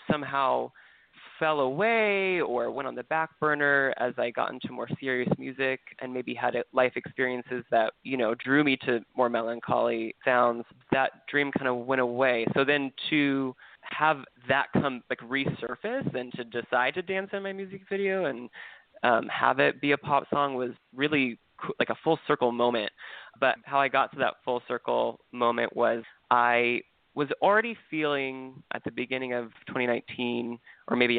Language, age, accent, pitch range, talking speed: English, 20-39, American, 120-145 Hz, 170 wpm